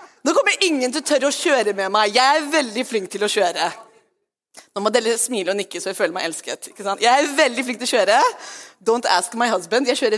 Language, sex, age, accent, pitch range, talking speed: English, female, 30-49, Swedish, 205-280 Hz, 205 wpm